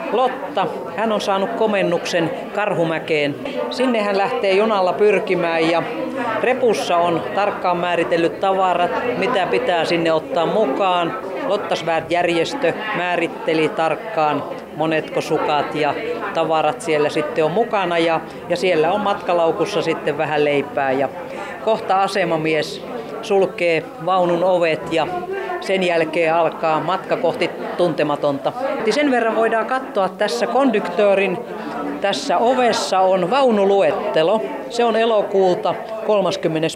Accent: native